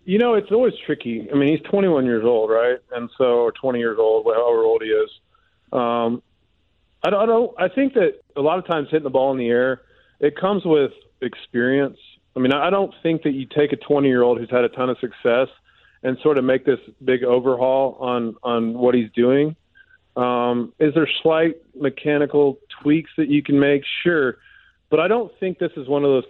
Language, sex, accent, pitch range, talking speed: English, male, American, 120-155 Hz, 210 wpm